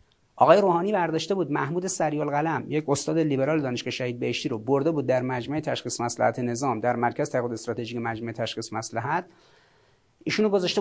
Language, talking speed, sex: Persian, 165 wpm, male